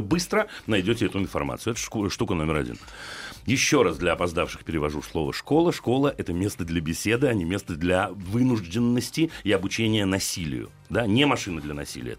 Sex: male